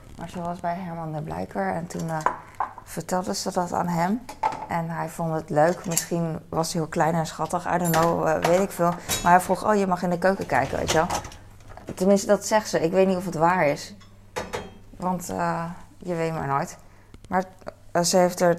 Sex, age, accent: female, 20-39, Dutch